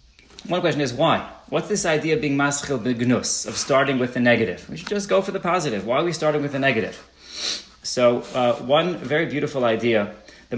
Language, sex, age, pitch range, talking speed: English, male, 30-49, 110-140 Hz, 210 wpm